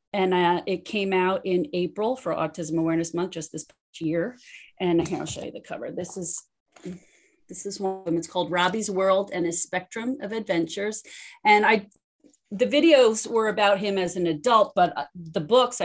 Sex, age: female, 30-49